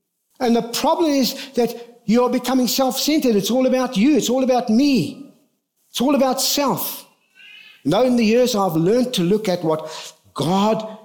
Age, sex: 60-79, male